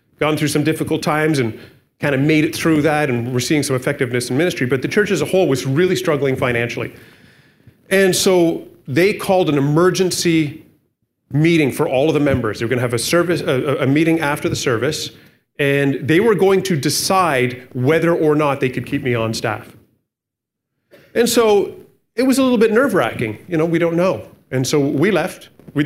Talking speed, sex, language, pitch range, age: 205 wpm, male, English, 125-180 Hz, 30-49